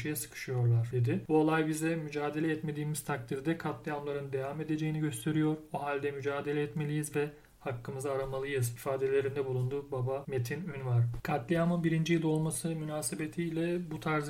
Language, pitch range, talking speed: Turkish, 130-150 Hz, 130 wpm